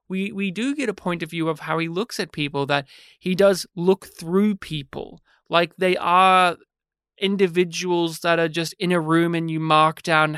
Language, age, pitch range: English, 30-49, 150-185 Hz